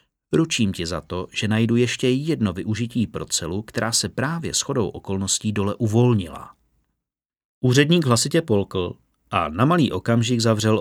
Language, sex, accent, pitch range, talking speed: Czech, male, native, 110-150 Hz, 145 wpm